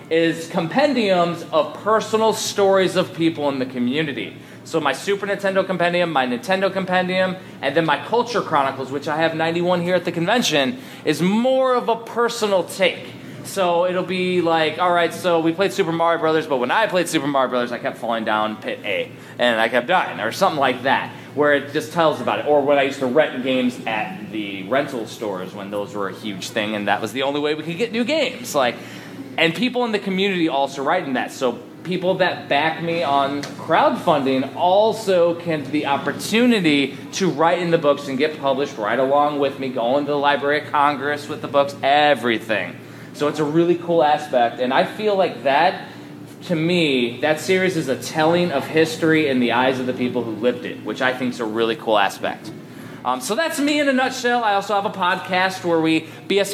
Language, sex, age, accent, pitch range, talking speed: English, male, 20-39, American, 140-185 Hz, 210 wpm